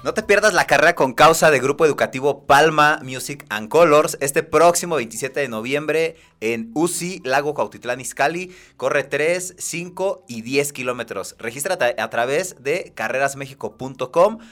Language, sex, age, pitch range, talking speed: Spanish, male, 30-49, 110-150 Hz, 145 wpm